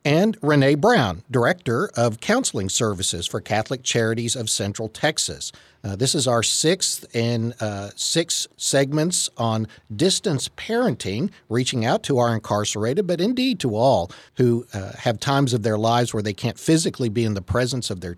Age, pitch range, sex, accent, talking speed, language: 50-69, 110-140 Hz, male, American, 170 wpm, English